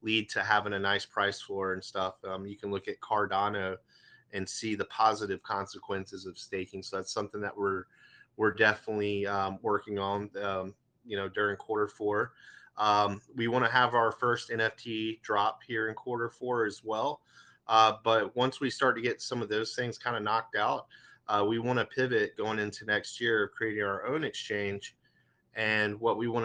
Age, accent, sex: 30-49, American, male